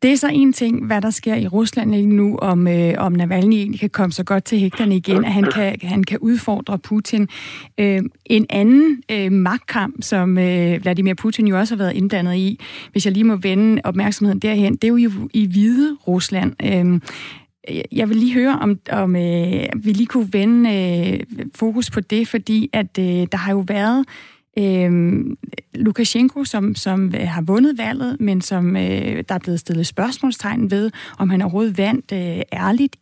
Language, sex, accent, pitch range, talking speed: Danish, female, native, 190-230 Hz, 185 wpm